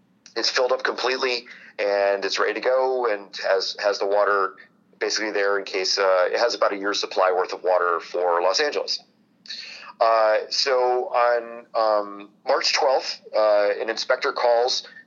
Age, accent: 30-49, American